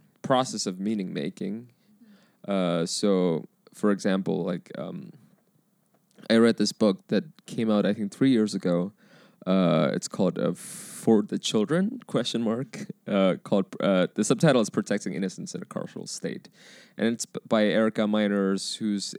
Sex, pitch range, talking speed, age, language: male, 100-150 Hz, 155 wpm, 20-39, English